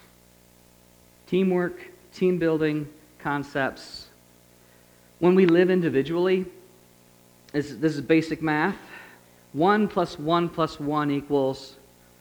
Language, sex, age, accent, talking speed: English, male, 40-59, American, 90 wpm